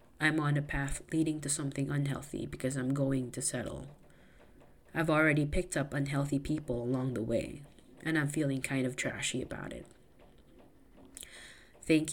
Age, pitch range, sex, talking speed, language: 30-49, 130-160 Hz, female, 155 wpm, English